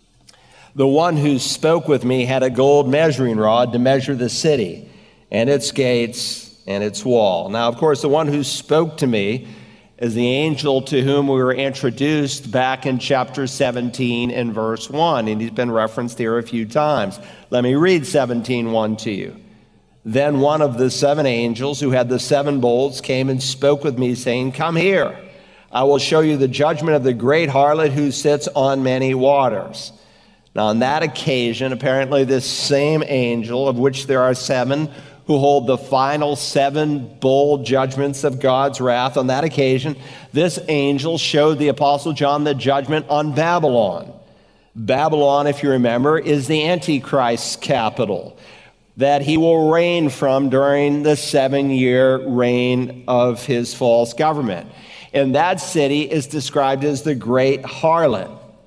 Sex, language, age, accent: male, English, 50-69, American